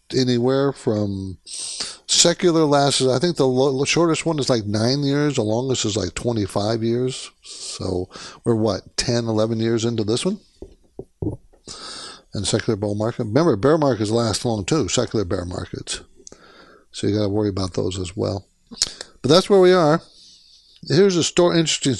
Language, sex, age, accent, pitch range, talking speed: English, male, 60-79, American, 110-155 Hz, 165 wpm